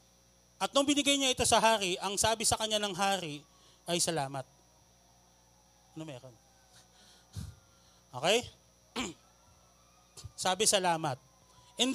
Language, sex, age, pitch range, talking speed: Filipino, male, 30-49, 135-225 Hz, 105 wpm